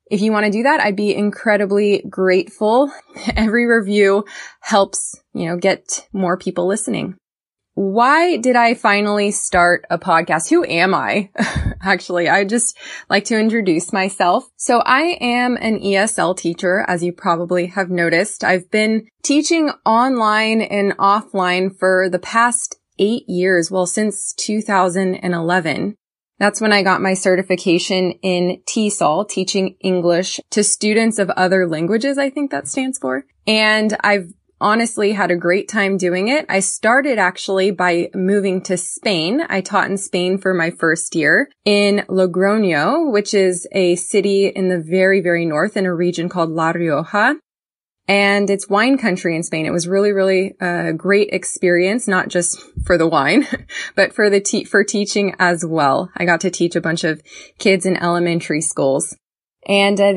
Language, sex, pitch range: English, female, 180-215 Hz